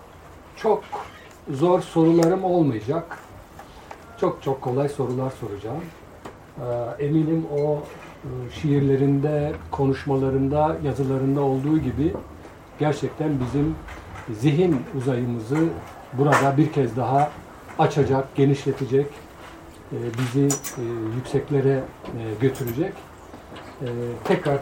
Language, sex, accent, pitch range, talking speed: Turkish, male, native, 130-155 Hz, 75 wpm